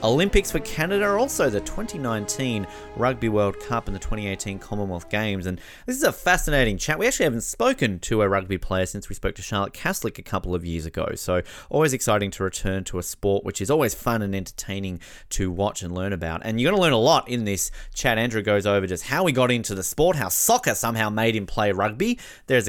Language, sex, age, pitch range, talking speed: English, male, 30-49, 95-120 Hz, 225 wpm